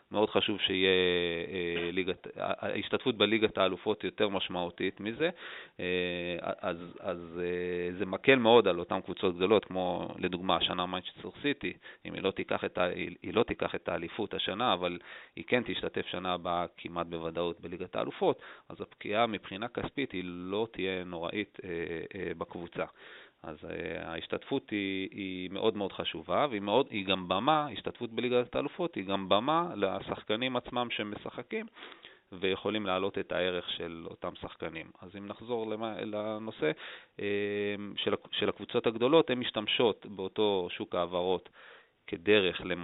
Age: 30-49